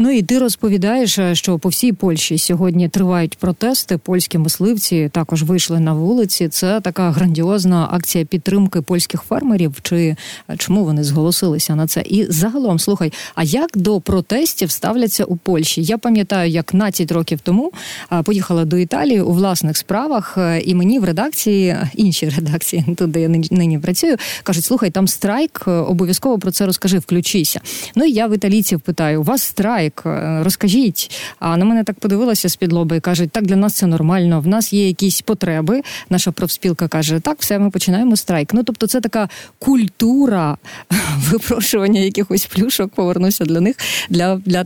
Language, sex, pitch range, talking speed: Ukrainian, female, 170-210 Hz, 160 wpm